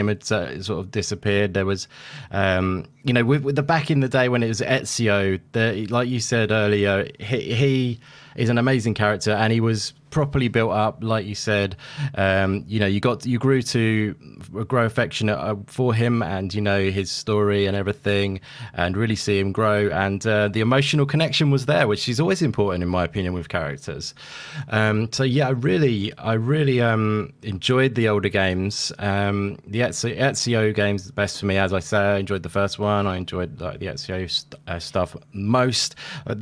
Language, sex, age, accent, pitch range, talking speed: English, male, 20-39, British, 100-130 Hz, 205 wpm